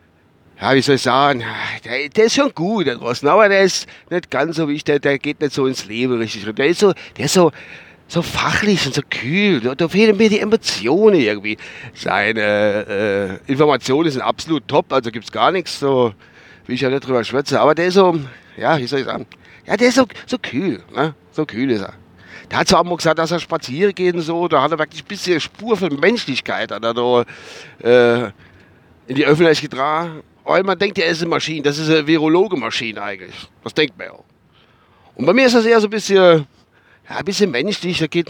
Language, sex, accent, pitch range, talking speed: German, male, German, 120-175 Hz, 225 wpm